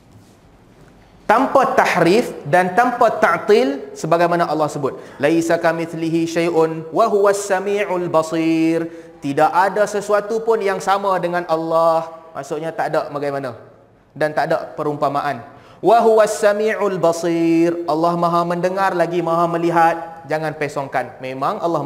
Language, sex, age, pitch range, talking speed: Malay, male, 20-39, 150-215 Hz, 100 wpm